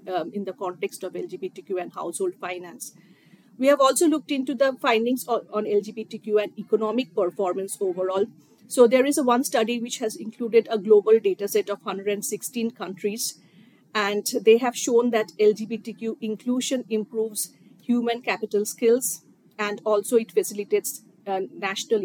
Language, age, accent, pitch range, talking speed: English, 50-69, Indian, 205-240 Hz, 150 wpm